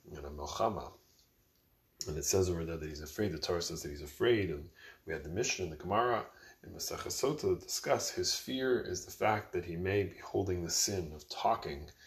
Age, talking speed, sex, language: 20-39, 215 wpm, male, English